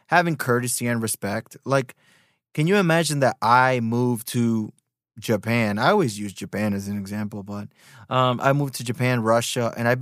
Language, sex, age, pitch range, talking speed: English, male, 20-39, 115-155 Hz, 175 wpm